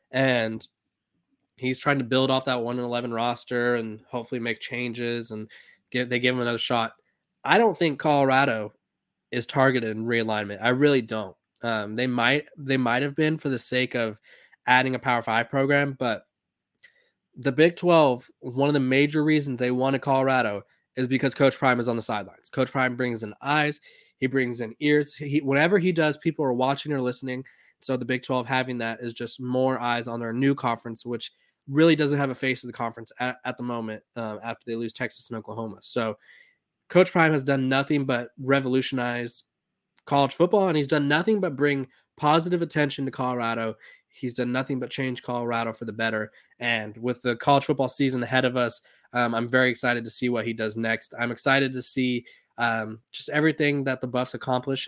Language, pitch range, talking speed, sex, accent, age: English, 120-140 Hz, 195 wpm, male, American, 20-39